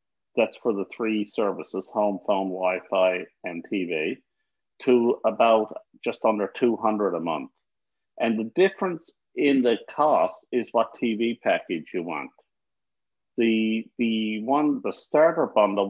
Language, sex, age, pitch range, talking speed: English, male, 50-69, 100-120 Hz, 130 wpm